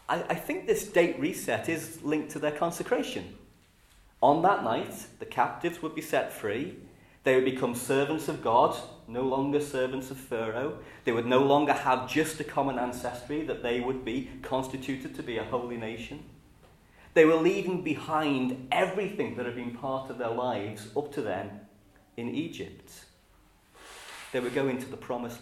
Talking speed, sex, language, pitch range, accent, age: 170 wpm, male, English, 110-145 Hz, British, 40-59